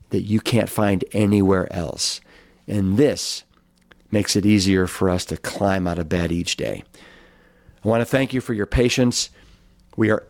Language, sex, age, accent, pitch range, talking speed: English, male, 50-69, American, 95-120 Hz, 175 wpm